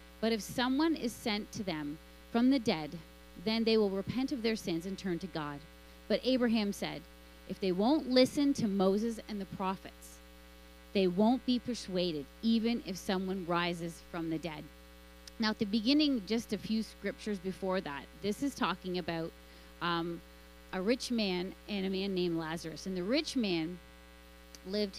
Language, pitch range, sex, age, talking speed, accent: English, 150-215 Hz, female, 30-49, 175 wpm, American